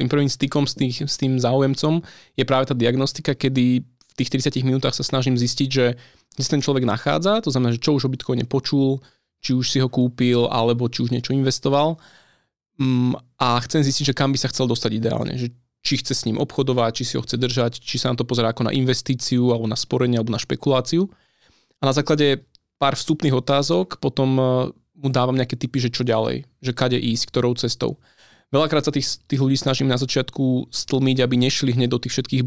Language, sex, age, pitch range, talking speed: Czech, male, 20-39, 120-135 Hz, 200 wpm